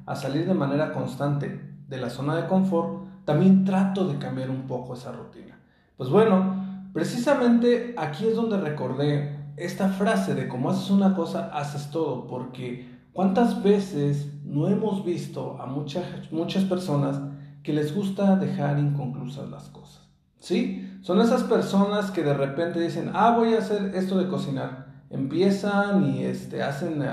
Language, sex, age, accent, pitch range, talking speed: Spanish, male, 40-59, Mexican, 145-195 Hz, 155 wpm